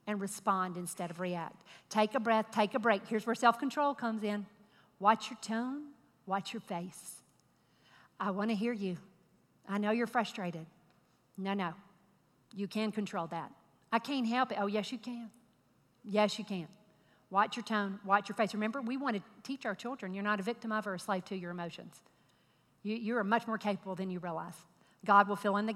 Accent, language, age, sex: American, English, 50-69, female